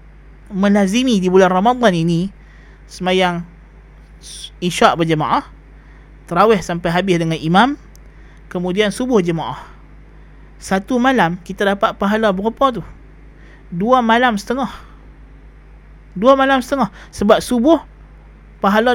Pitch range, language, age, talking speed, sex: 175-225 Hz, Malay, 20-39, 100 wpm, male